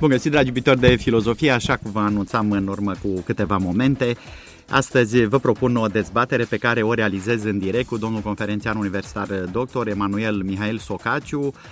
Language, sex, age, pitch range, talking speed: Romanian, male, 30-49, 115-140 Hz, 175 wpm